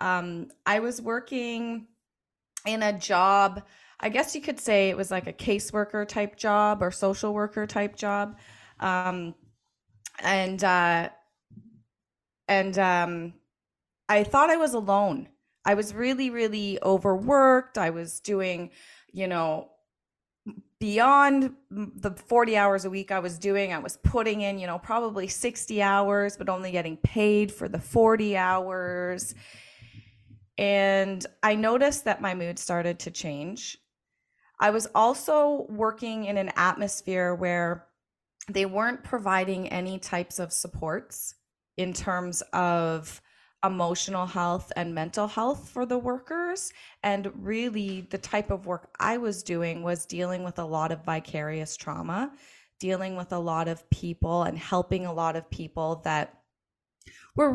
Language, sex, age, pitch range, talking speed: English, female, 30-49, 175-215 Hz, 140 wpm